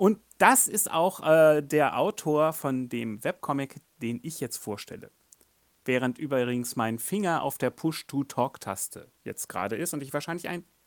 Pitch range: 135-190 Hz